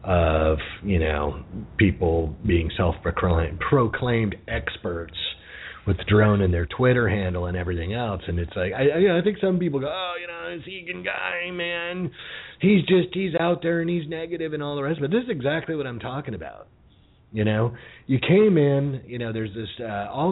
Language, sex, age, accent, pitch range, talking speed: English, male, 30-49, American, 95-135 Hz, 185 wpm